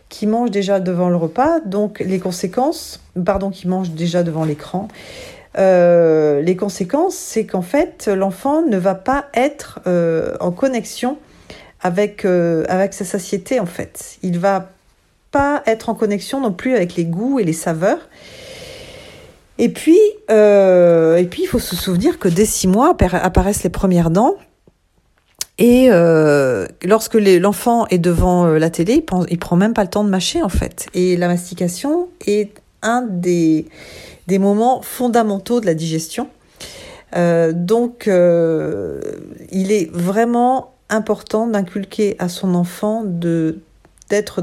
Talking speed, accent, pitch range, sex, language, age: 150 wpm, French, 175-225 Hz, female, French, 40-59